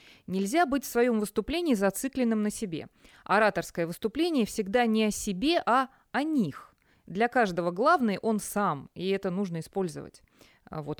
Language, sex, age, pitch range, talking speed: Russian, female, 20-39, 180-235 Hz, 145 wpm